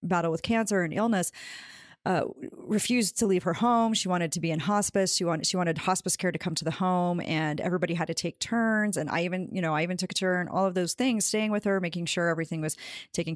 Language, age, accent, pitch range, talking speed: English, 40-59, American, 170-210 Hz, 250 wpm